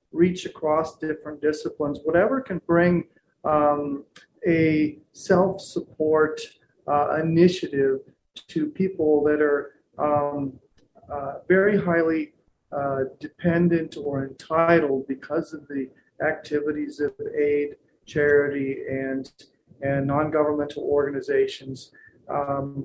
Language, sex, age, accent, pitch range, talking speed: English, male, 40-59, American, 140-175 Hz, 95 wpm